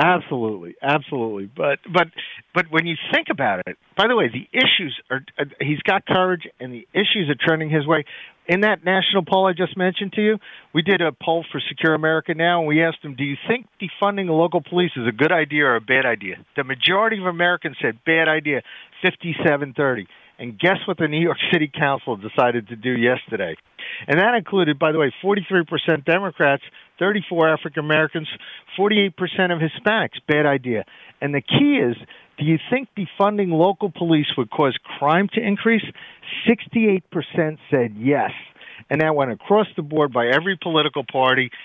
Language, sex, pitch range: English, male, 145-185 Hz